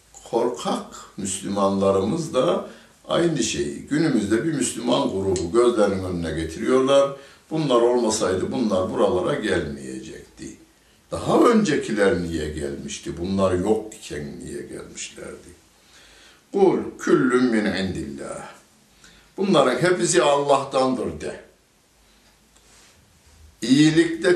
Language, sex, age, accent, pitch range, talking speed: Turkish, male, 60-79, native, 85-140 Hz, 85 wpm